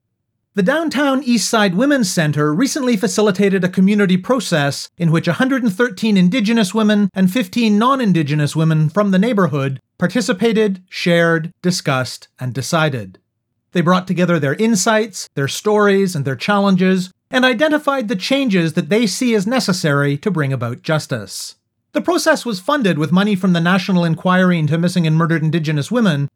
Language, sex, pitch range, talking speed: English, male, 160-220 Hz, 150 wpm